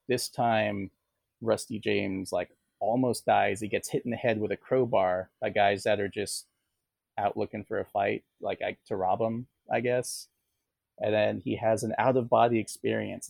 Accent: American